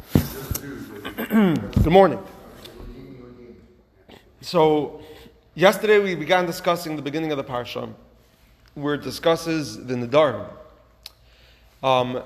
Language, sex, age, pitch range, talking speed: English, male, 30-49, 130-170 Hz, 90 wpm